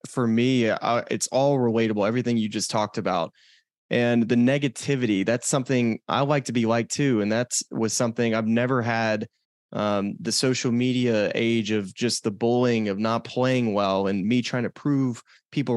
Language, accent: English, American